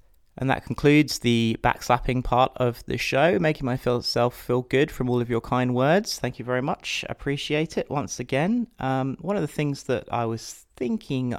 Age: 30-49